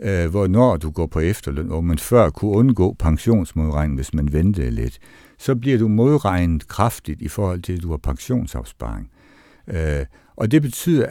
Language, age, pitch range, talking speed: Danish, 60-79, 80-115 Hz, 165 wpm